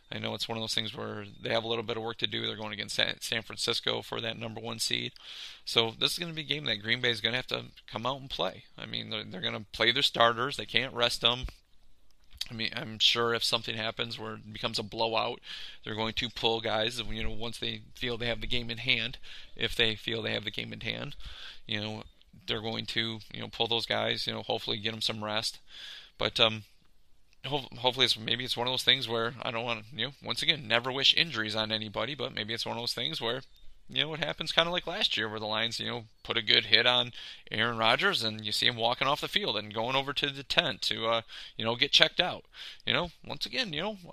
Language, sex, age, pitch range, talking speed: English, male, 30-49, 110-125 Hz, 265 wpm